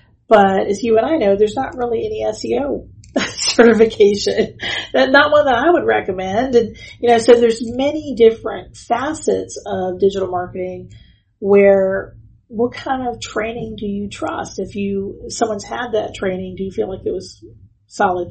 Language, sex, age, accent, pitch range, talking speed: English, female, 40-59, American, 185-235 Hz, 165 wpm